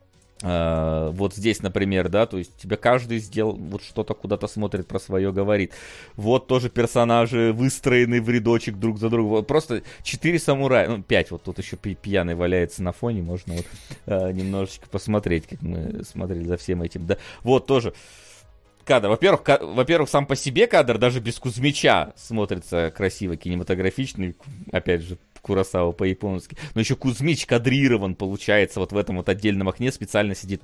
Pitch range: 95-120 Hz